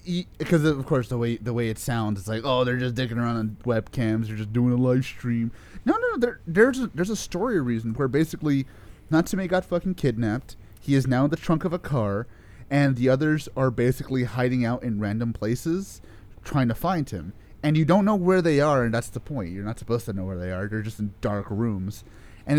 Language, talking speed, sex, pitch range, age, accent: English, 230 wpm, male, 105-145 Hz, 30-49, American